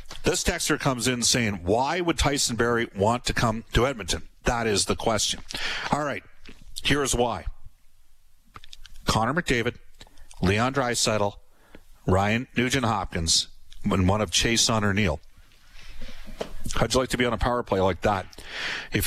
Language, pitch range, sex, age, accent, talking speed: English, 100-125 Hz, male, 50-69, American, 150 wpm